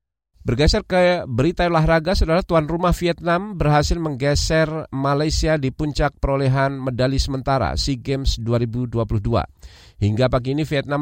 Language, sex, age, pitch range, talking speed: Indonesian, male, 40-59, 95-135 Hz, 125 wpm